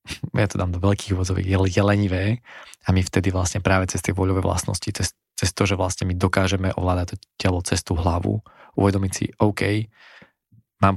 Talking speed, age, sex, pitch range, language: 180 wpm, 20-39, male, 95-110 Hz, Slovak